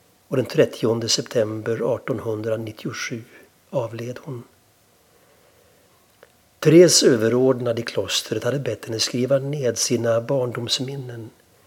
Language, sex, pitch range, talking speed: Swedish, male, 115-130 Hz, 95 wpm